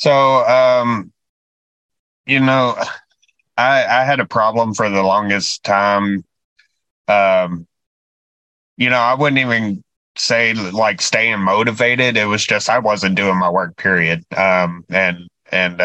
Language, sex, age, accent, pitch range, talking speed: English, male, 30-49, American, 90-105 Hz, 135 wpm